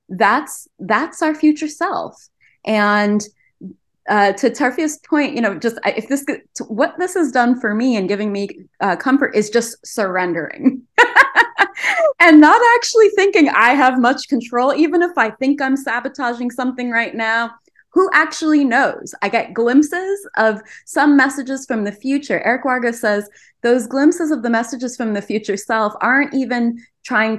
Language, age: English, 20-39